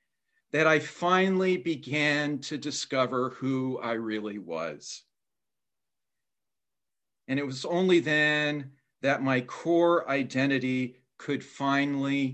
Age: 50-69